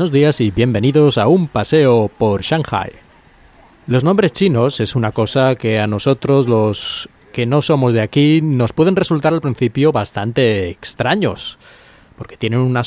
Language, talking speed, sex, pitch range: Spanish, 160 wpm, male, 110-145 Hz